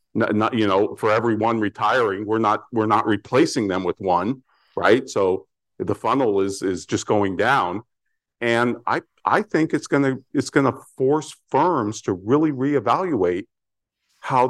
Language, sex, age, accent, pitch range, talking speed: English, male, 50-69, American, 110-150 Hz, 165 wpm